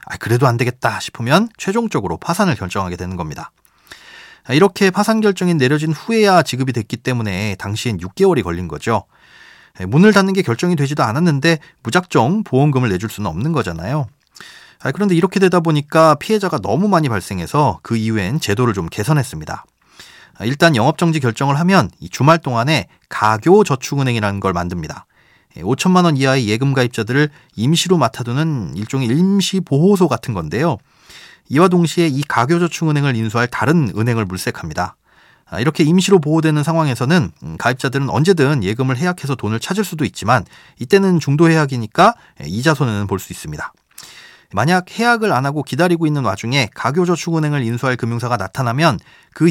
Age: 30-49